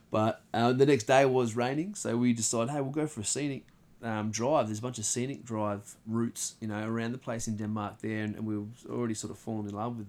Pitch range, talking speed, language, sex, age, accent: 105-130 Hz, 270 wpm, English, male, 20-39, Australian